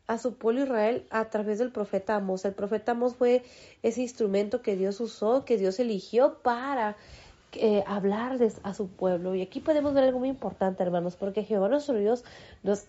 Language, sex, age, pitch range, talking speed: Spanish, female, 30-49, 210-260 Hz, 185 wpm